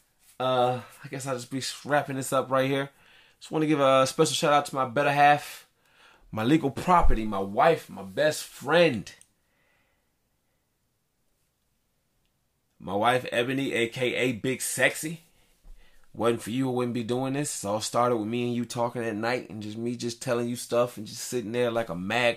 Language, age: English, 20-39